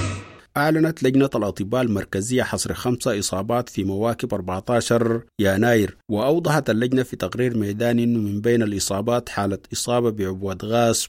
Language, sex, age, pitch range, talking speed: English, male, 50-69, 100-125 Hz, 130 wpm